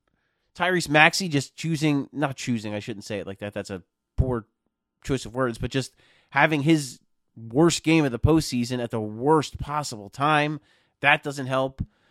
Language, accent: English, American